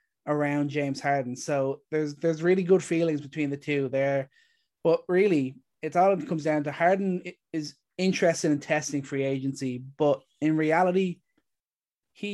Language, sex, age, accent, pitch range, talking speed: English, male, 20-39, Irish, 145-165 Hz, 155 wpm